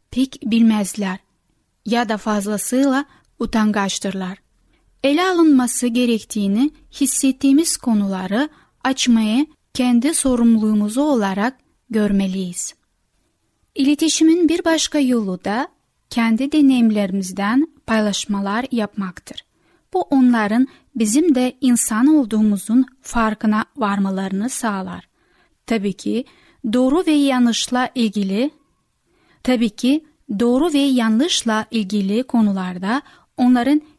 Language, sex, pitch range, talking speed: Turkish, female, 210-275 Hz, 85 wpm